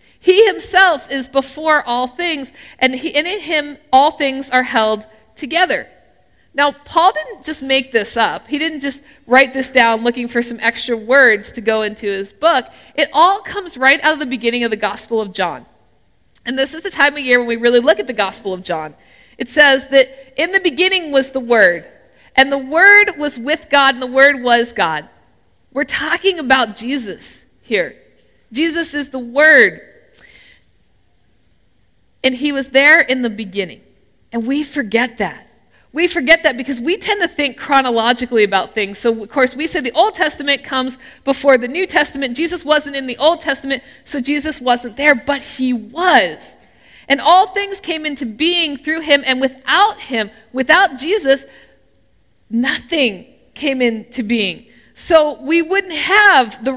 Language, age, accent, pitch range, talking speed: English, 50-69, American, 245-315 Hz, 175 wpm